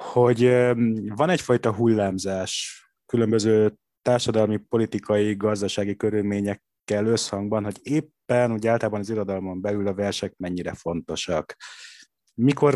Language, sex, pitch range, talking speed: Hungarian, male, 100-125 Hz, 105 wpm